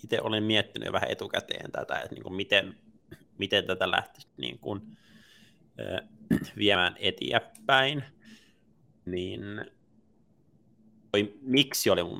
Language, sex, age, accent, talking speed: Finnish, male, 20-39, native, 90 wpm